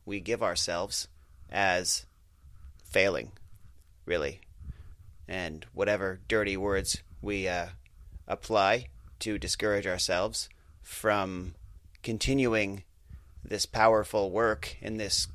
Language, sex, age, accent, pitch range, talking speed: English, male, 30-49, American, 85-110 Hz, 90 wpm